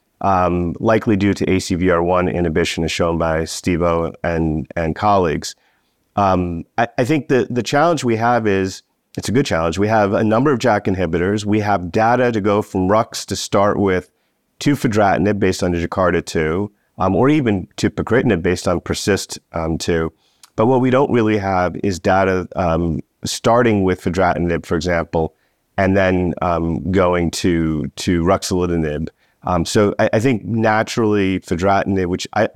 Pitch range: 85-105 Hz